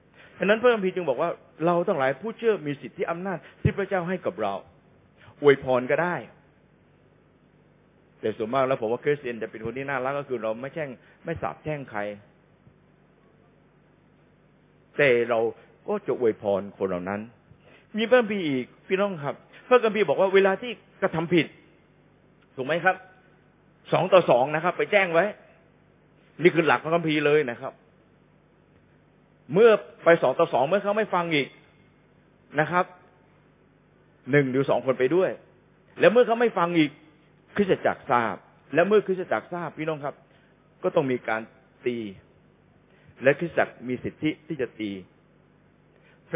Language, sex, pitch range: Thai, male, 125-185 Hz